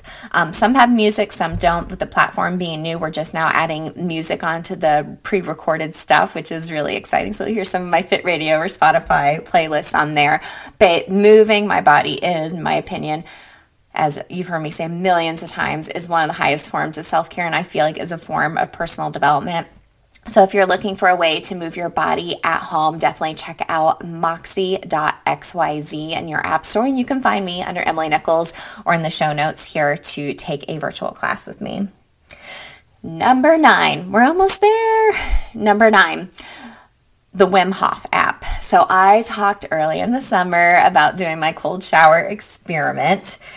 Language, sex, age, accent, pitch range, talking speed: English, female, 20-39, American, 160-200 Hz, 185 wpm